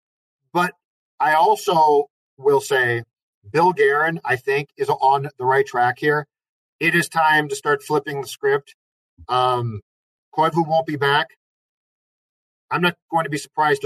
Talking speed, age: 145 wpm, 50-69